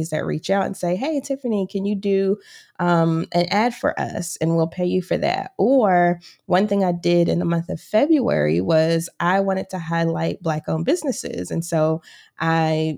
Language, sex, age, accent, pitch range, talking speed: English, female, 20-39, American, 165-210 Hz, 190 wpm